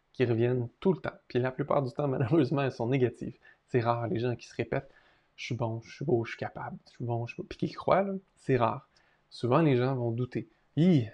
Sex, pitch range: male, 120-140 Hz